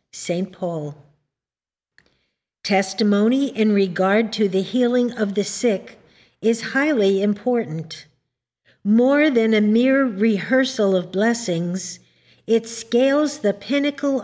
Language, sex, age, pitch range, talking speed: English, female, 50-69, 185-235 Hz, 105 wpm